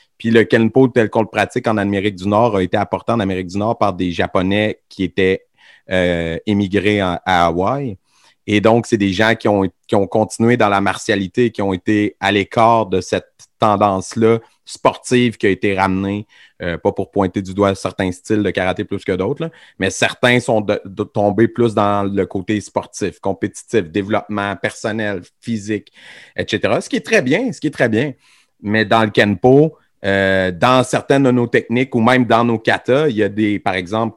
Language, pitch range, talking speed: French, 95-110 Hz, 195 wpm